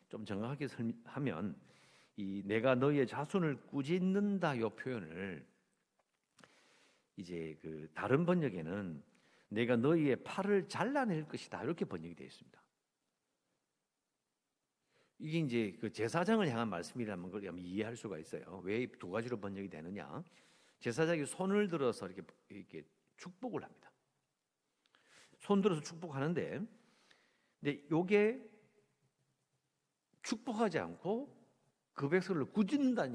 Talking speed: 95 wpm